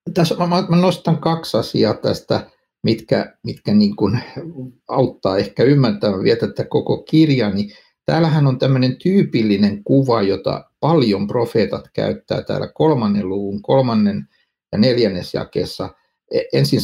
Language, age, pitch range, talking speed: Finnish, 60-79, 105-165 Hz, 115 wpm